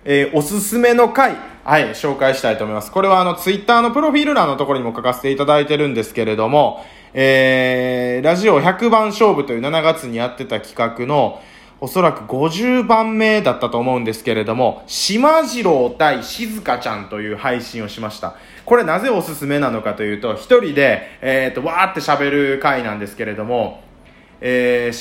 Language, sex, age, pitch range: Japanese, male, 20-39, 120-200 Hz